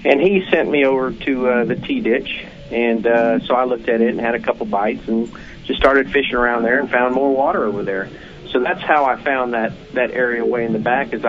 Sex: male